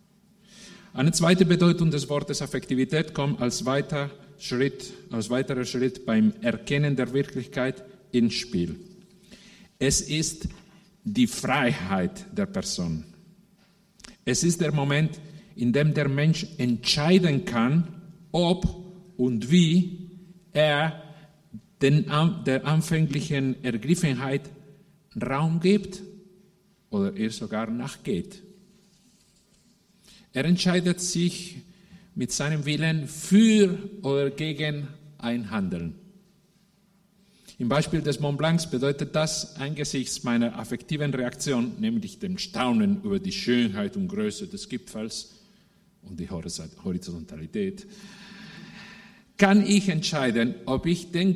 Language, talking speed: German, 105 wpm